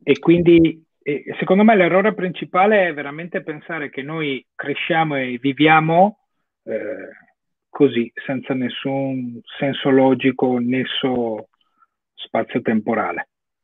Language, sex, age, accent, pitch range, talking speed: Italian, male, 40-59, native, 135-190 Hz, 100 wpm